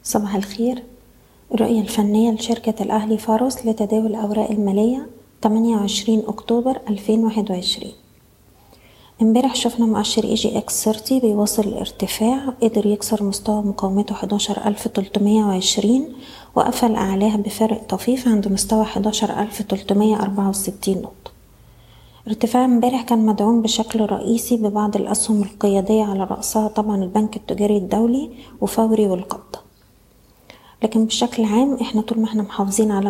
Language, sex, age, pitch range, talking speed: Arabic, female, 20-39, 205-230 Hz, 110 wpm